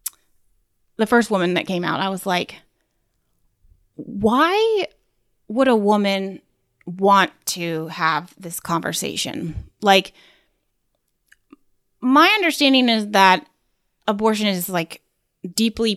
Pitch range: 185-235 Hz